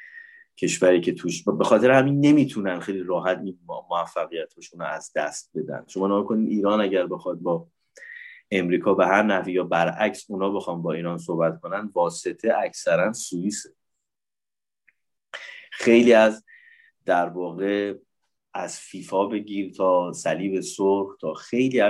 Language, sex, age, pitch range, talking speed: English, male, 30-49, 85-115 Hz, 135 wpm